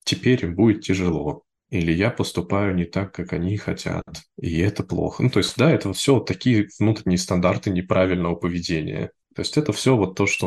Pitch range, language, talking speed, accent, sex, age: 90-105 Hz, Russian, 200 wpm, native, male, 20-39